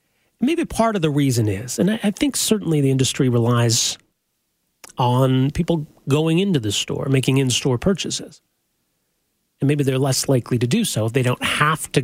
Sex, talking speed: male, 175 wpm